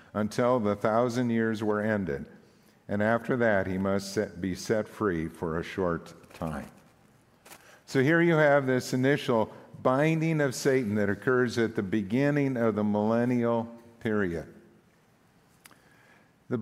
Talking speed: 135 wpm